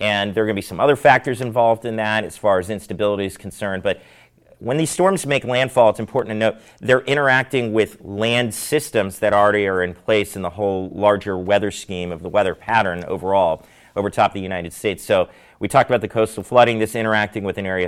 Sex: male